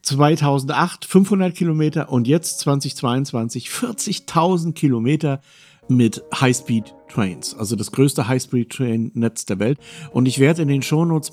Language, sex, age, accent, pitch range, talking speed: German, male, 50-69, German, 110-145 Hz, 115 wpm